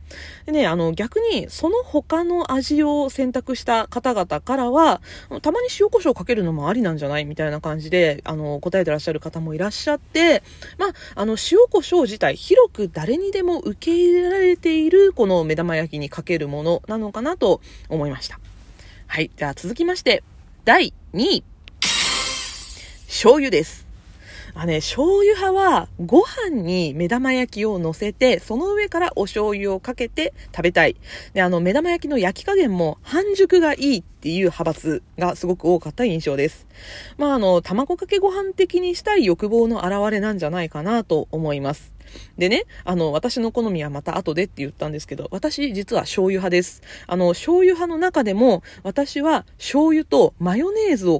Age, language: 20-39, Japanese